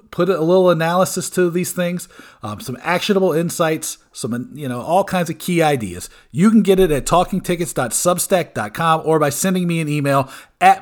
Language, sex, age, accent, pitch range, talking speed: English, male, 40-59, American, 145-180 Hz, 175 wpm